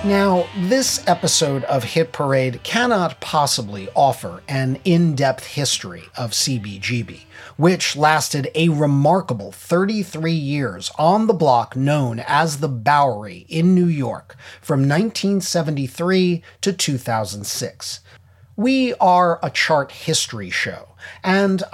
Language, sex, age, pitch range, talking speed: English, male, 40-59, 125-180 Hz, 115 wpm